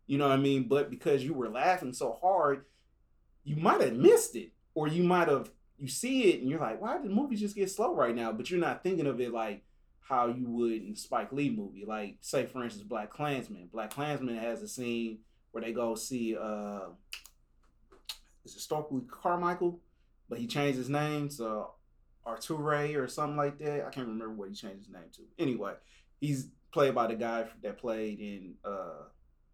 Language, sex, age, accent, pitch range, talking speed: English, male, 30-49, American, 115-150 Hz, 205 wpm